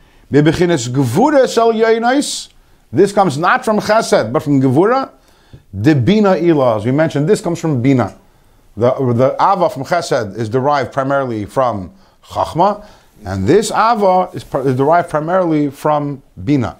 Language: English